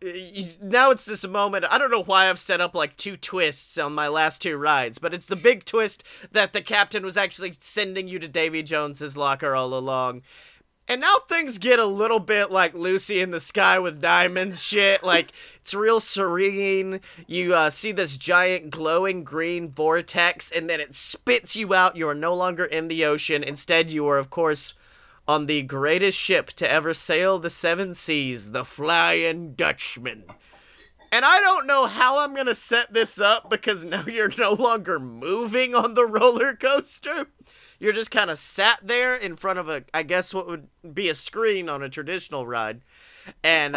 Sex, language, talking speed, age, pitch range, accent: male, English, 190 wpm, 30-49, 155-205 Hz, American